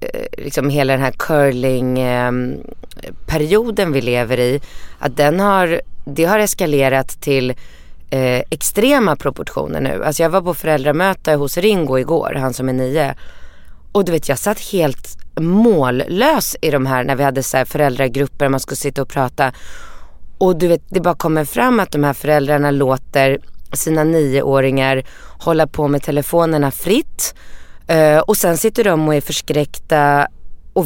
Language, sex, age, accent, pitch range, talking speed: English, female, 20-39, Swedish, 135-165 Hz, 155 wpm